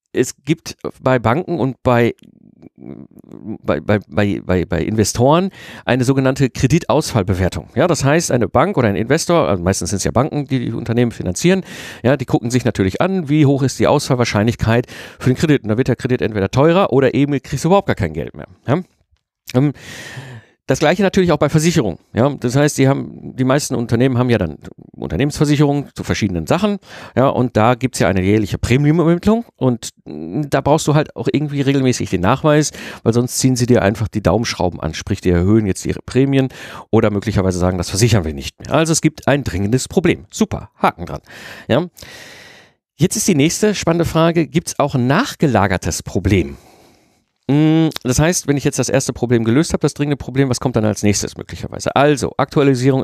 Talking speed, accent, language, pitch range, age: 190 wpm, German, German, 110-145 Hz, 50-69